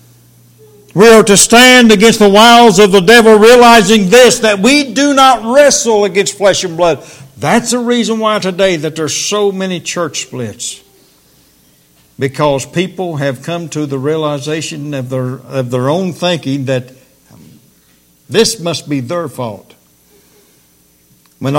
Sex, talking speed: male, 145 wpm